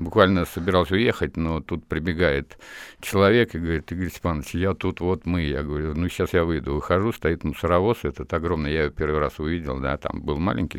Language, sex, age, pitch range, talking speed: Russian, male, 60-79, 75-95 Hz, 195 wpm